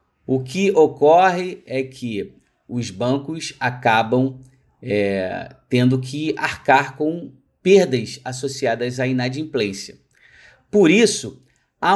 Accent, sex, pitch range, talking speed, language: Brazilian, male, 115-155 Hz, 95 wpm, Portuguese